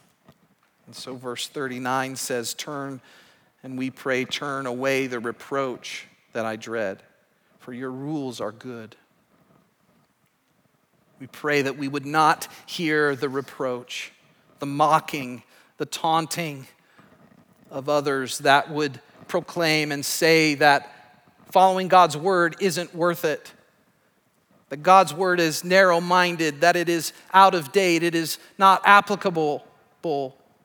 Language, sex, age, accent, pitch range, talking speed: English, male, 40-59, American, 125-160 Hz, 125 wpm